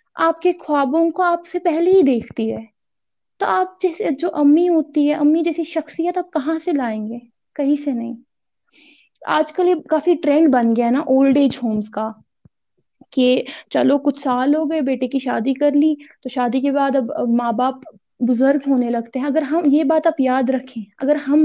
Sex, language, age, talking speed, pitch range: female, Urdu, 20-39, 200 wpm, 245-305 Hz